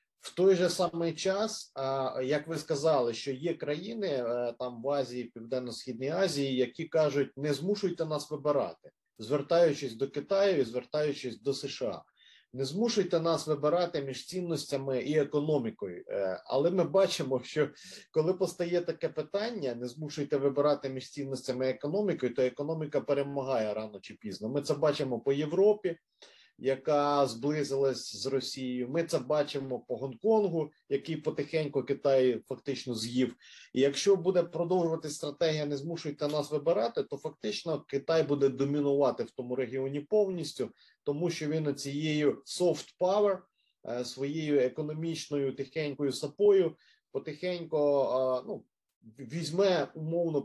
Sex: male